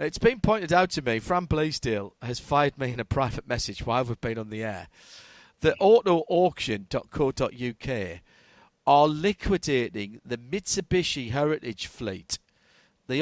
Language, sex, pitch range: English, male, 125-180 Hz